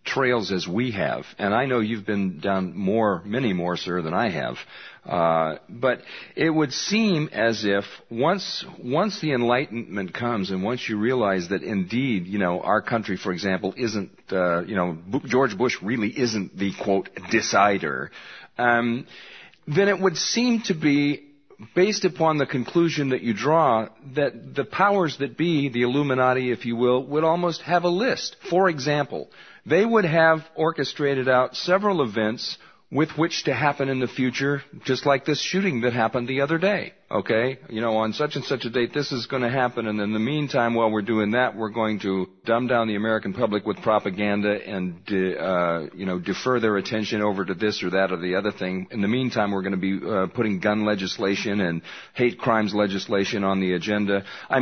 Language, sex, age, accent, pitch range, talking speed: English, male, 40-59, American, 100-145 Hz, 190 wpm